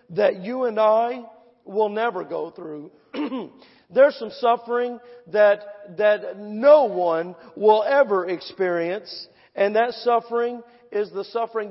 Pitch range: 200-250 Hz